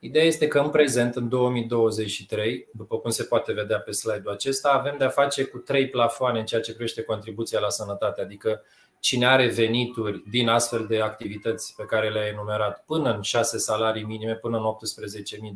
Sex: male